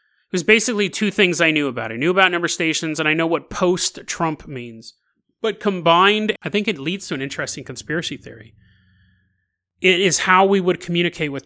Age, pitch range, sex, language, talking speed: 30-49, 145-210 Hz, male, English, 195 wpm